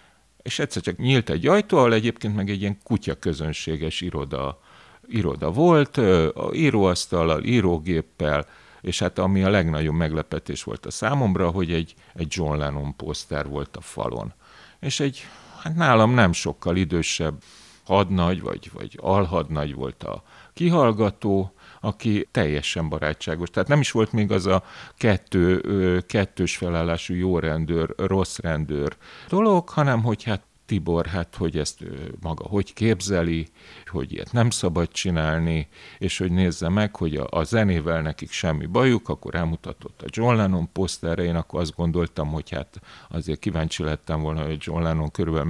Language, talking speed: Hungarian, 150 wpm